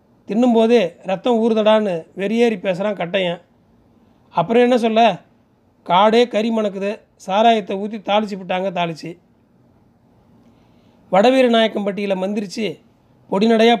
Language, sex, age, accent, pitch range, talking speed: Tamil, male, 30-49, native, 185-225 Hz, 85 wpm